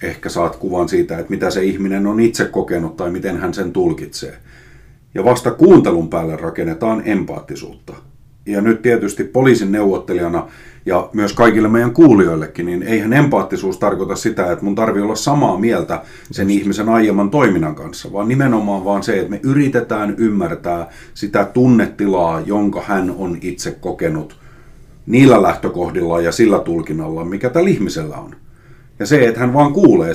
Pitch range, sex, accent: 95-120 Hz, male, native